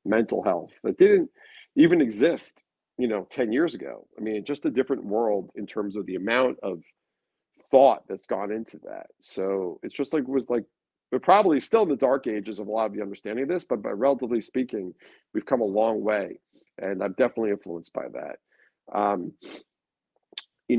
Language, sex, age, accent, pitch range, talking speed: English, male, 40-59, American, 100-130 Hz, 195 wpm